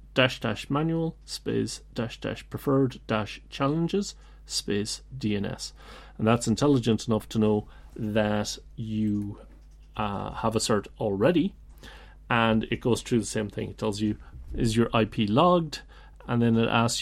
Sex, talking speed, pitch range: male, 150 wpm, 105-125 Hz